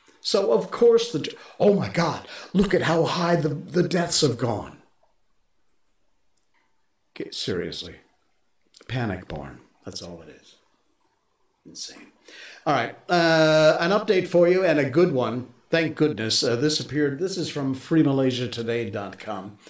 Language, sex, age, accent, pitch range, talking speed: English, male, 50-69, American, 110-150 Hz, 135 wpm